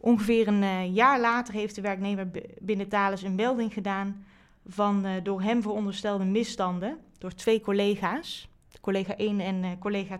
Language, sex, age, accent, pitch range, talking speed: English, female, 20-39, Dutch, 195-230 Hz, 140 wpm